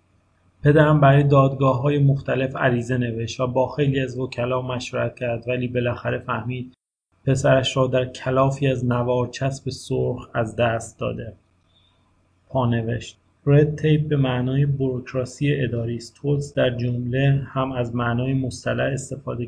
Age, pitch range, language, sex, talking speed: 30-49, 120-135 Hz, Persian, male, 130 wpm